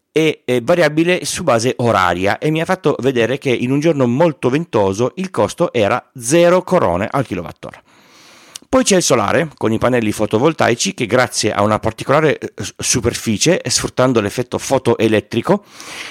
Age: 40-59